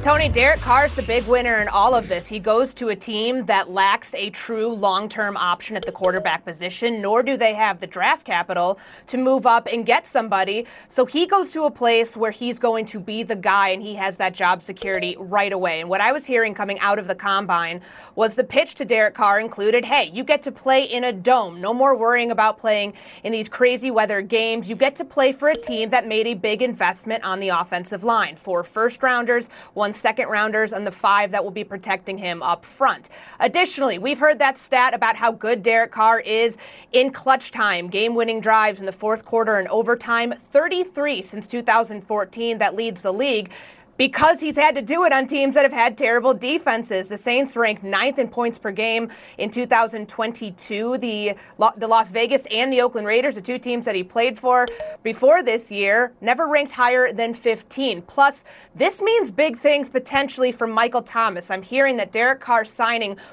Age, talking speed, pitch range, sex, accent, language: 30-49, 205 wpm, 205-255 Hz, female, American, English